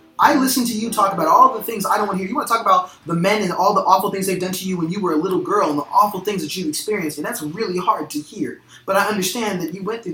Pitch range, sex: 155-200 Hz, male